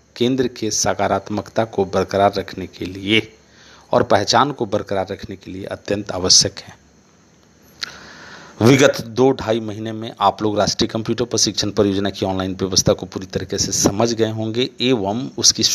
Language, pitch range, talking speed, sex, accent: Hindi, 95-115 Hz, 155 wpm, male, native